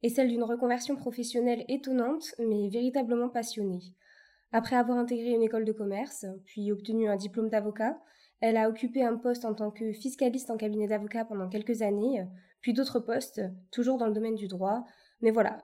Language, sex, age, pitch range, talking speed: French, female, 20-39, 205-240 Hz, 180 wpm